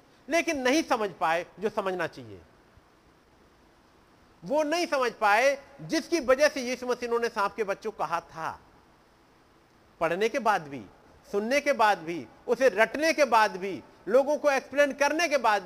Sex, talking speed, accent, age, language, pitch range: male, 175 wpm, native, 50-69, Hindi, 155-255 Hz